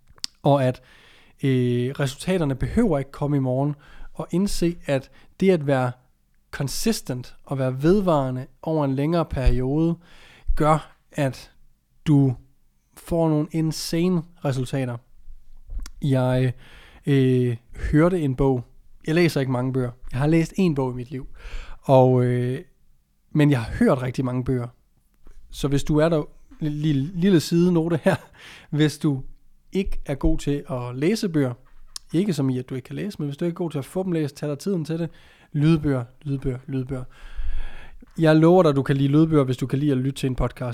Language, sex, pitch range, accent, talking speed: Danish, male, 125-155 Hz, native, 175 wpm